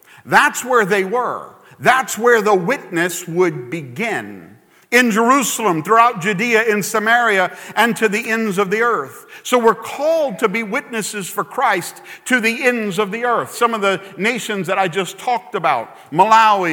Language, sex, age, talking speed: English, male, 50-69, 165 wpm